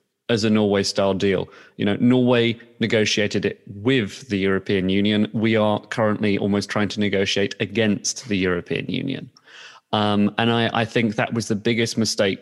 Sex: male